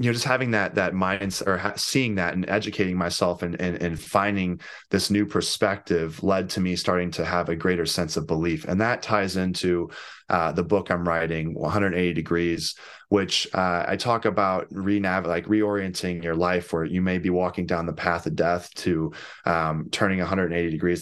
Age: 20-39